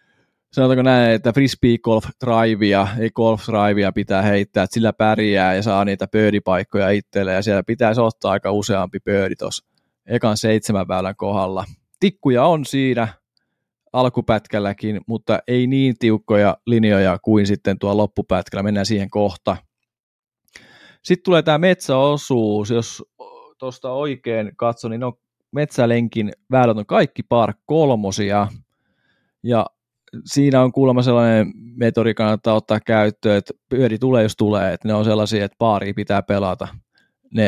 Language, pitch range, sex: Finnish, 105-125 Hz, male